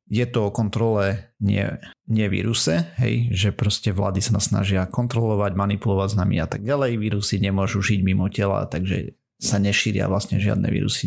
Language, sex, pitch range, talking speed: Slovak, male, 100-120 Hz, 155 wpm